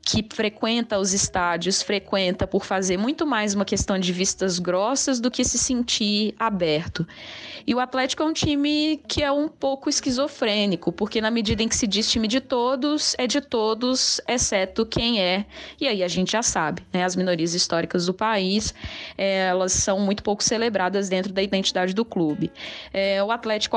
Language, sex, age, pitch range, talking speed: Portuguese, female, 10-29, 185-230 Hz, 175 wpm